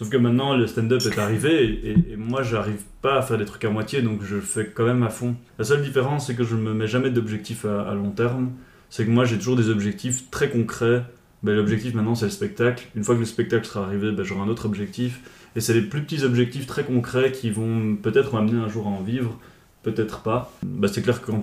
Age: 20-39